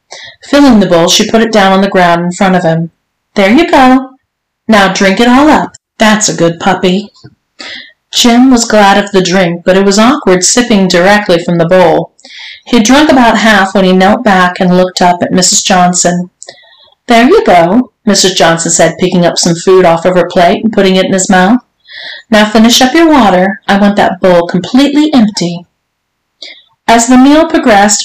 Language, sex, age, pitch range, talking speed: English, female, 40-59, 180-230 Hz, 195 wpm